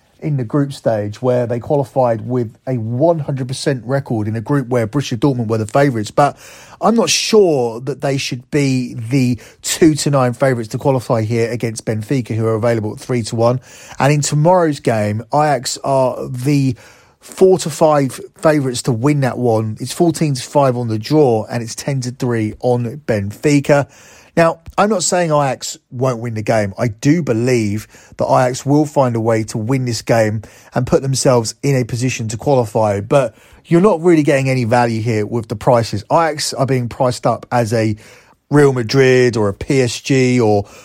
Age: 30-49